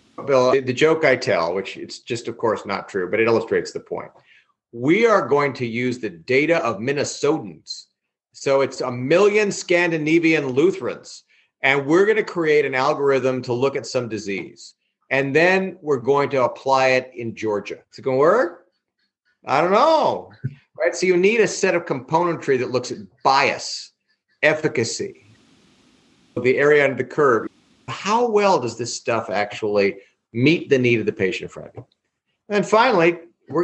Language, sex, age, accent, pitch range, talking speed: English, male, 40-59, American, 115-165 Hz, 170 wpm